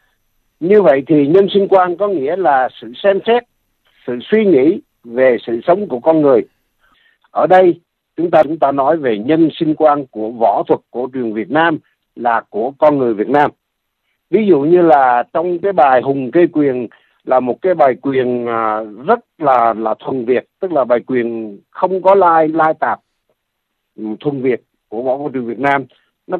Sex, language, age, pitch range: male, Vietnamese, 60-79, 125-195 Hz